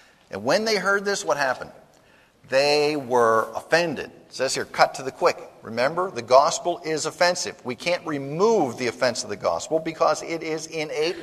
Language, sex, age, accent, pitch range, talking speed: English, male, 50-69, American, 115-180 Hz, 180 wpm